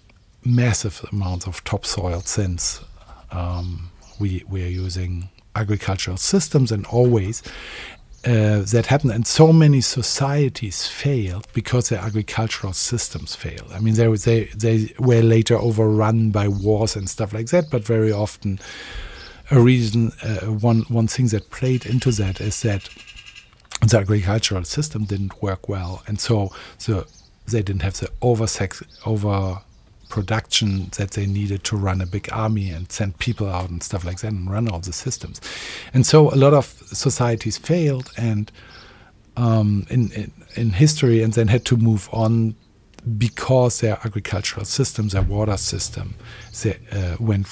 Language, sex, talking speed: English, male, 155 wpm